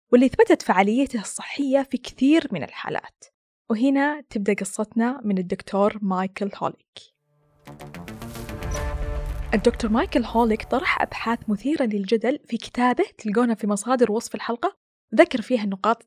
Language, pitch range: Arabic, 210-275 Hz